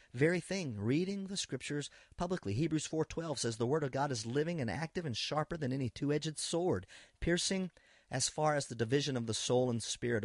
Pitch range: 105-135 Hz